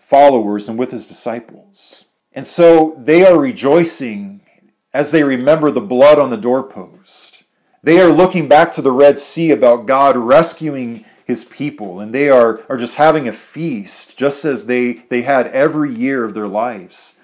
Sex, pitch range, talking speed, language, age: male, 125-165 Hz, 170 wpm, English, 40-59